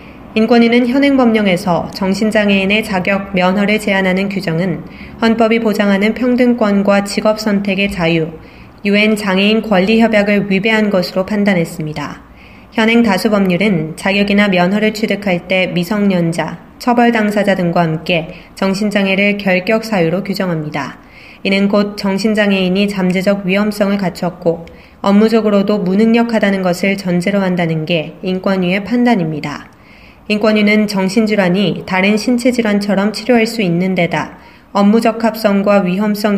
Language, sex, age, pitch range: Korean, female, 20-39, 180-215 Hz